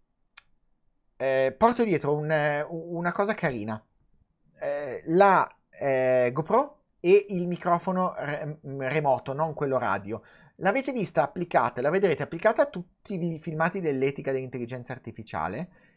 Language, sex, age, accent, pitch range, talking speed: Italian, male, 30-49, native, 145-205 Hz, 110 wpm